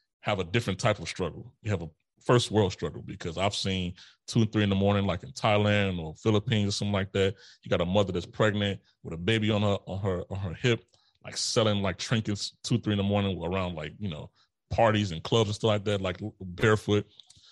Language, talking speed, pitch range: English, 235 wpm, 95-110 Hz